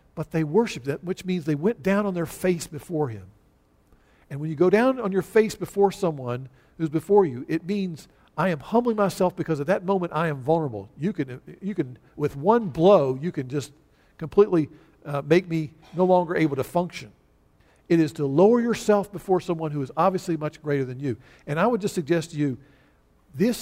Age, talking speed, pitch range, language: 50-69, 205 wpm, 150-205 Hz, English